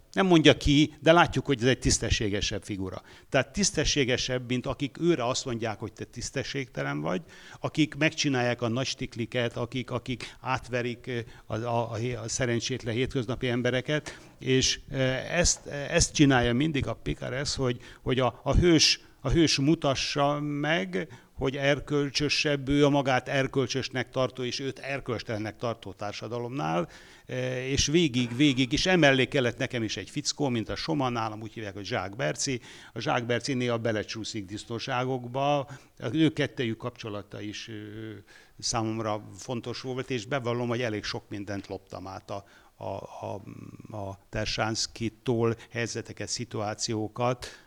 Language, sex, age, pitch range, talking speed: Hungarian, male, 60-79, 110-135 Hz, 140 wpm